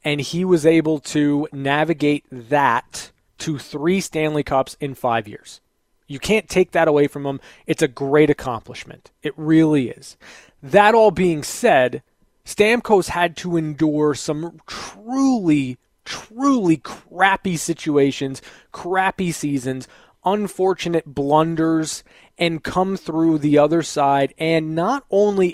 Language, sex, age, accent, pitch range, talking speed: English, male, 20-39, American, 145-180 Hz, 125 wpm